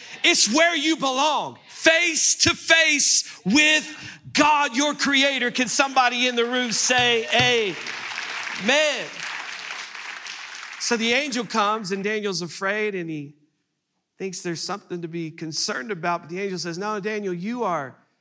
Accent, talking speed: American, 130 wpm